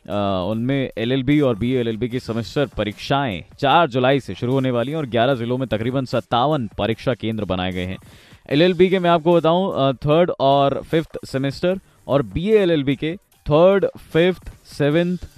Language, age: Hindi, 20-39